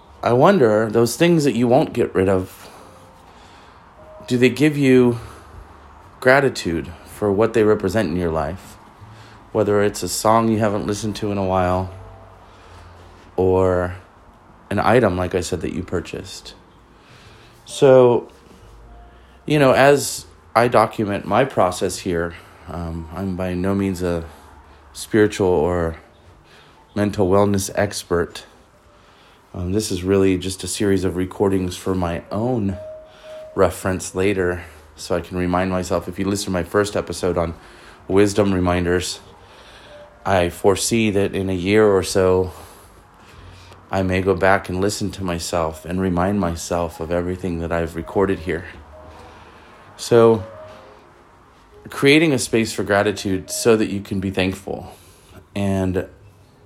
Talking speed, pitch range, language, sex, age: 135 wpm, 90-105 Hz, English, male, 30-49